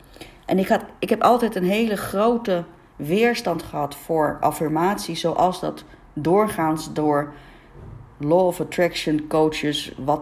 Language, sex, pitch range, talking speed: Dutch, female, 155-190 Hz, 130 wpm